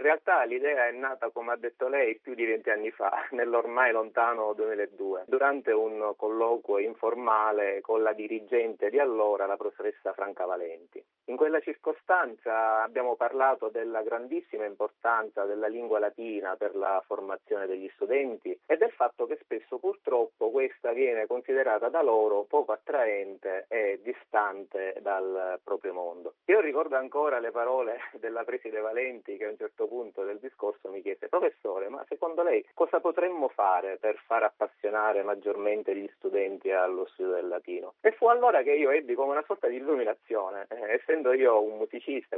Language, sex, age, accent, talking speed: Italian, male, 30-49, native, 160 wpm